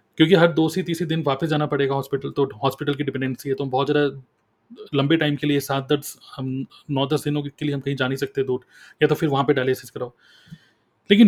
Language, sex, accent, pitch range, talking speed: Hindi, male, native, 140-165 Hz, 235 wpm